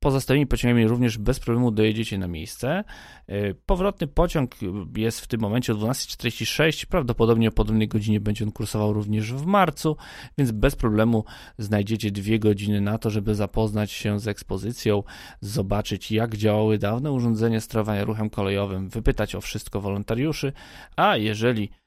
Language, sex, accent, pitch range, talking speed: Polish, male, native, 105-120 Hz, 145 wpm